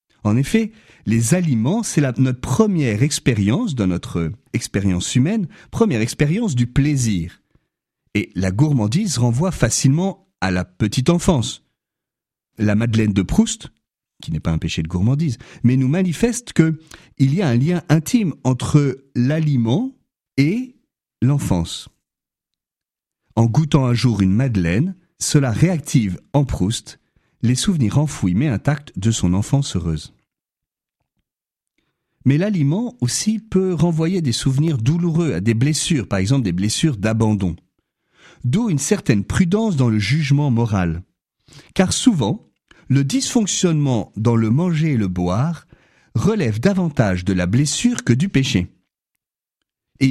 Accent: French